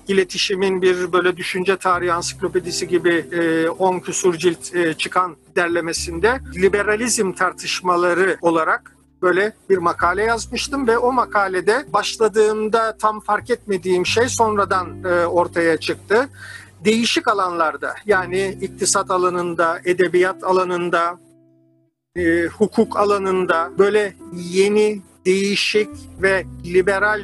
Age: 50-69